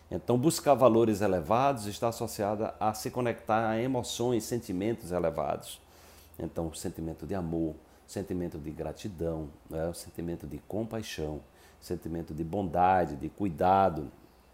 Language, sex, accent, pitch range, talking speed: Portuguese, male, Brazilian, 85-110 Hz, 135 wpm